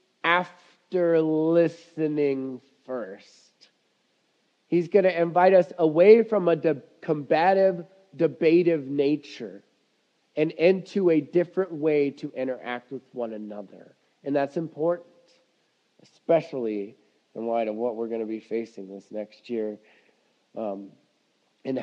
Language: English